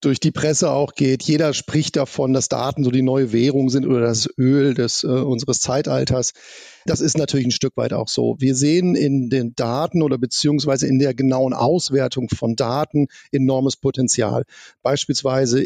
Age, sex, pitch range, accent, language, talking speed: 40-59, male, 130-155 Hz, German, German, 175 wpm